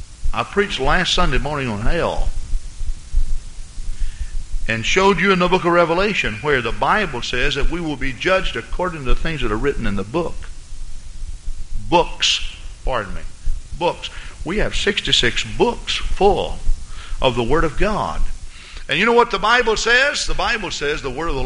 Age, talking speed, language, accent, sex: 50-69, 175 wpm, English, American, male